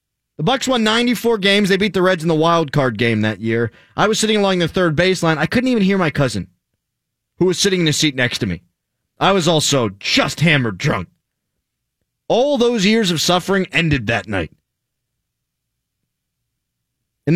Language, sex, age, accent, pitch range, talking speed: English, male, 30-49, American, 130-185 Hz, 185 wpm